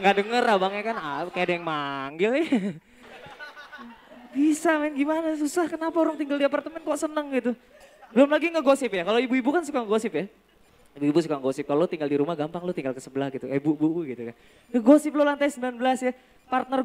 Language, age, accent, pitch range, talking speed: Indonesian, 20-39, native, 250-345 Hz, 200 wpm